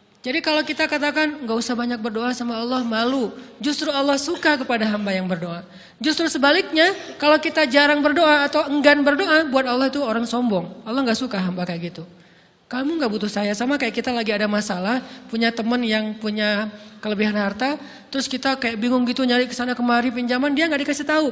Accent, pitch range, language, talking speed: native, 220-300 Hz, Indonesian, 190 wpm